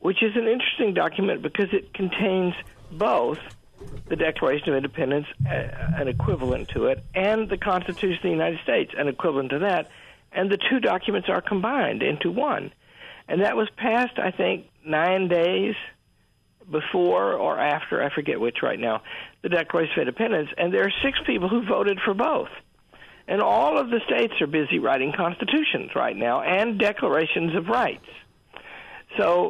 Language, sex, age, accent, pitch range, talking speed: English, male, 60-79, American, 155-225 Hz, 165 wpm